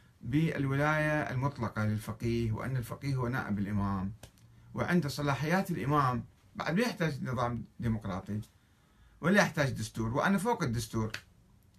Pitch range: 105-145 Hz